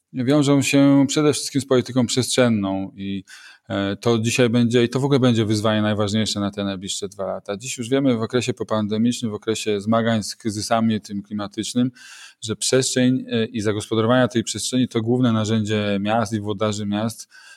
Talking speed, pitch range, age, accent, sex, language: 165 wpm, 105-115 Hz, 20-39, native, male, Polish